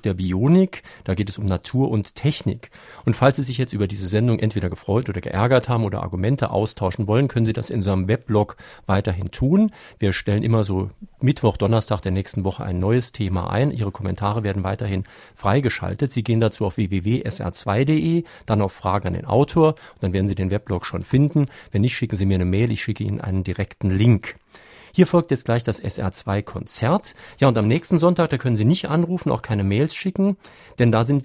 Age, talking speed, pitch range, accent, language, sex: 50-69, 205 wpm, 100-125 Hz, German, German, male